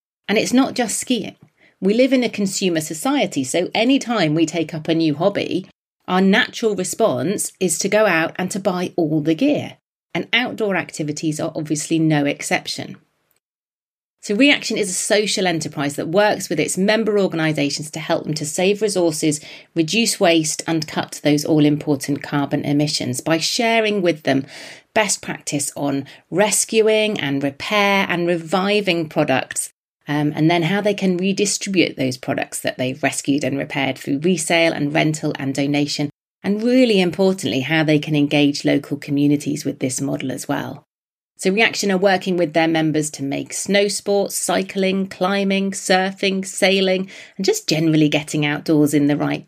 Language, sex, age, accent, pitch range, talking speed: English, female, 40-59, British, 150-200 Hz, 165 wpm